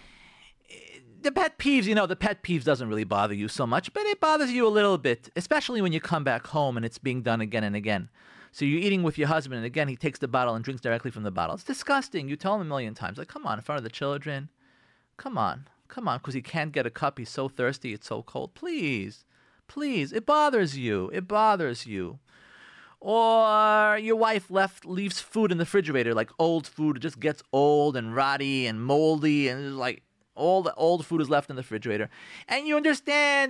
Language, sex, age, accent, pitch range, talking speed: English, male, 40-59, American, 130-210 Hz, 225 wpm